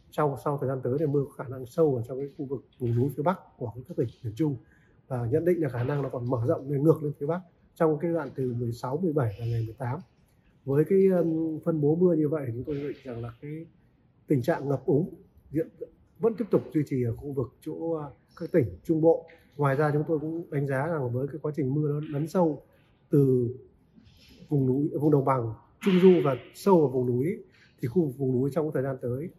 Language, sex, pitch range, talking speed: Vietnamese, male, 130-160 Hz, 245 wpm